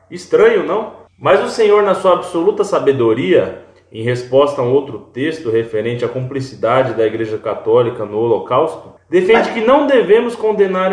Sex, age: male, 20-39